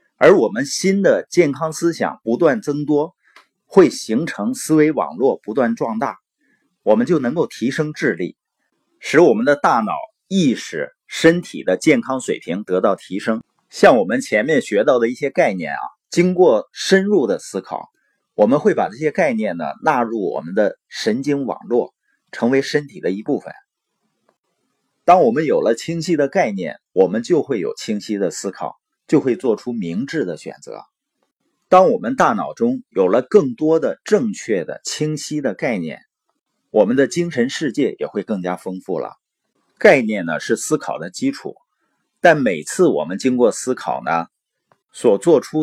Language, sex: Chinese, male